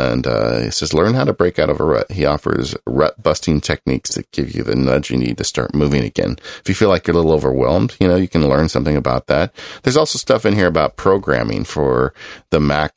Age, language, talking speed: 40-59, English, 245 wpm